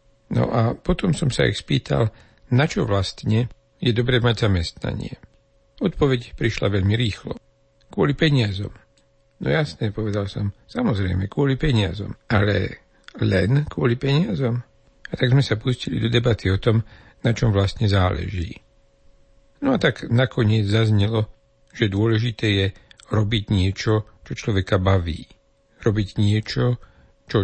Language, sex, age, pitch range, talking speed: Slovak, male, 60-79, 100-120 Hz, 130 wpm